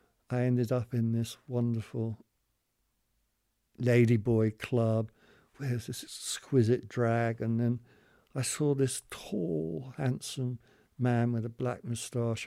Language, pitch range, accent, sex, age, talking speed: English, 115-145 Hz, British, male, 60-79, 120 wpm